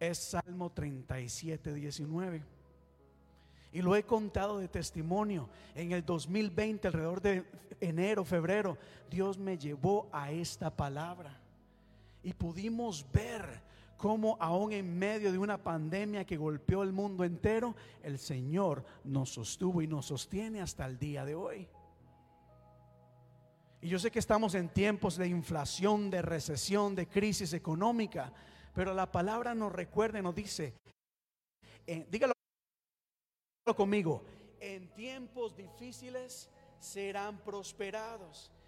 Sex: male